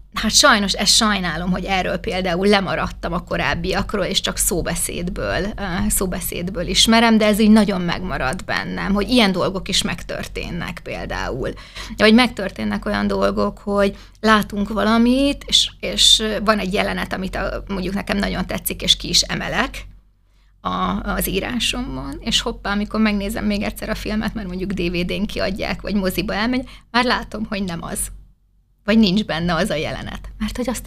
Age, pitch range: 20-39, 190-220 Hz